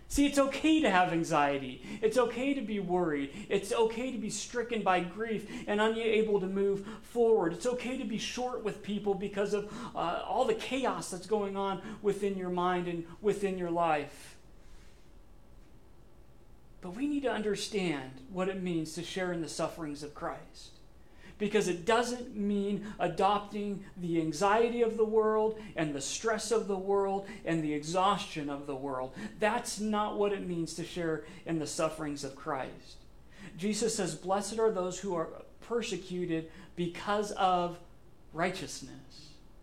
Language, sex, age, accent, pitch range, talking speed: English, male, 40-59, American, 160-210 Hz, 160 wpm